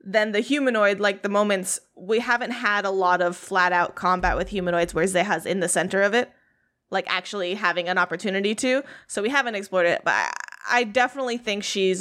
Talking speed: 195 wpm